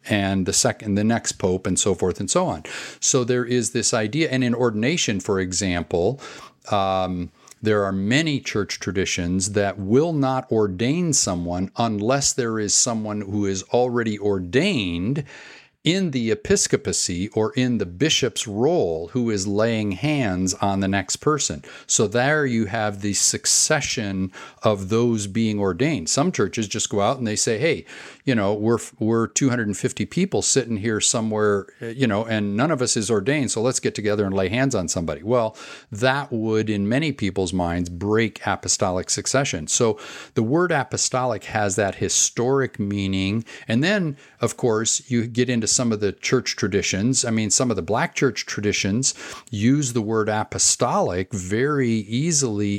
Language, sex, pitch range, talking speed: English, male, 100-125 Hz, 165 wpm